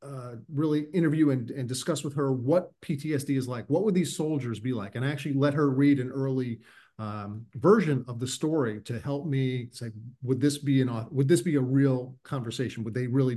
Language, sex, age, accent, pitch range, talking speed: English, male, 40-59, American, 115-140 Hz, 215 wpm